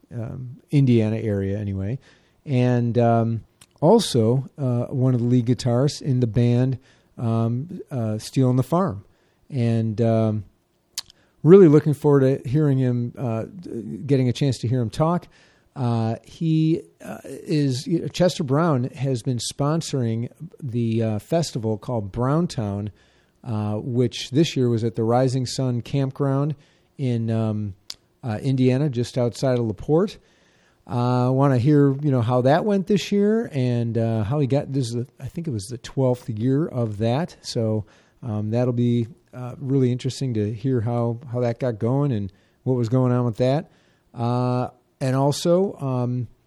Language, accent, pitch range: English, American, 115-145 Hz